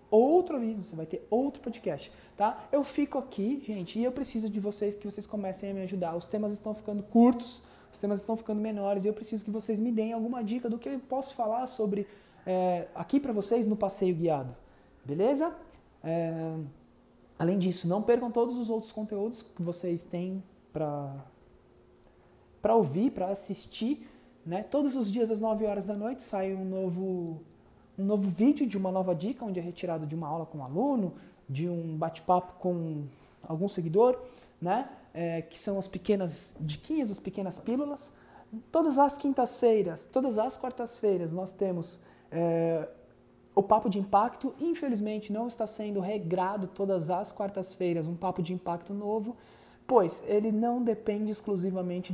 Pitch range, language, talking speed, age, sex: 180-230 Hz, Portuguese, 165 wpm, 20-39, male